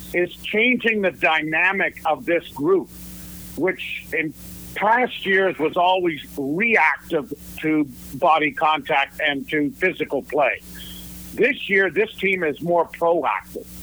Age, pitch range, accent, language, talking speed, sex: 50-69, 145-180 Hz, American, English, 120 wpm, male